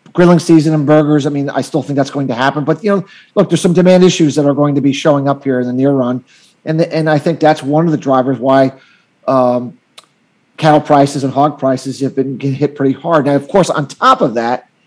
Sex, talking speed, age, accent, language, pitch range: male, 255 wpm, 30-49, American, English, 135-160 Hz